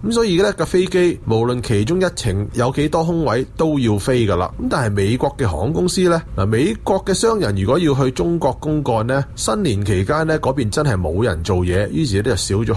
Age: 30-49